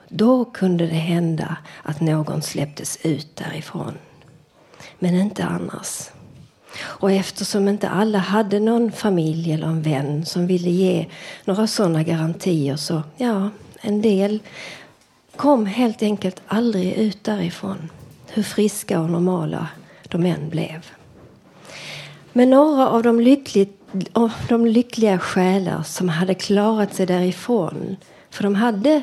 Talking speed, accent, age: 125 wpm, native, 40-59